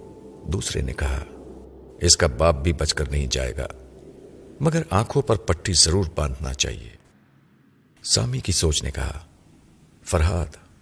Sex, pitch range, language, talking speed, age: male, 75-90 Hz, Urdu, 140 wpm, 50-69